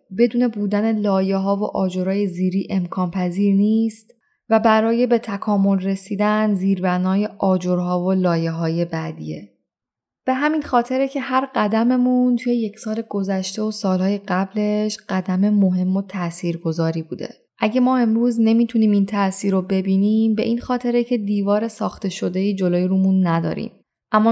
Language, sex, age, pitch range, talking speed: Persian, female, 10-29, 185-225 Hz, 140 wpm